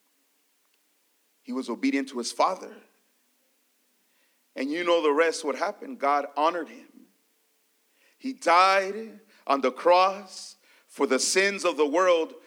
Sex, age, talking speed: male, 40-59, 130 wpm